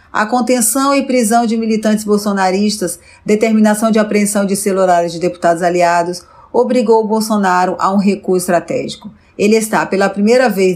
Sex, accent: female, Brazilian